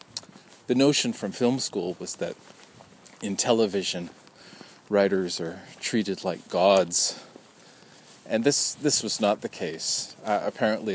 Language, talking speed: English, 125 wpm